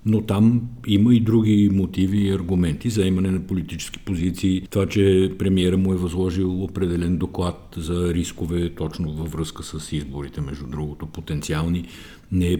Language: Bulgarian